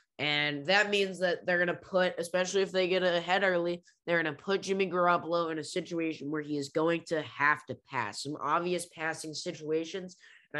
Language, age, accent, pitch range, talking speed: English, 10-29, American, 150-175 Hz, 205 wpm